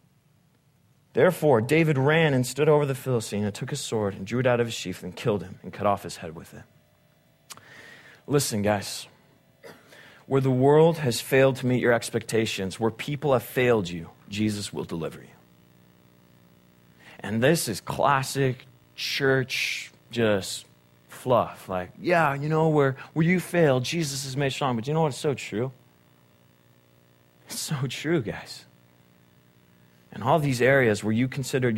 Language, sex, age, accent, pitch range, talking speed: English, male, 30-49, American, 95-155 Hz, 160 wpm